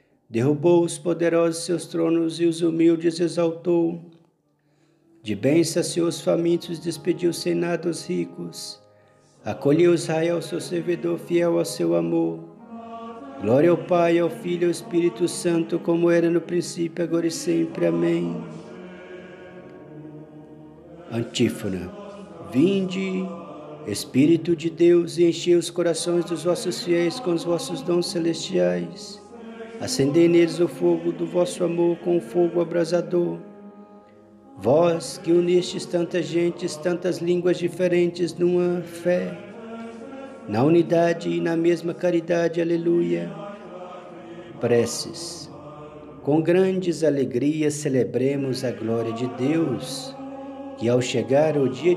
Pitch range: 150-175 Hz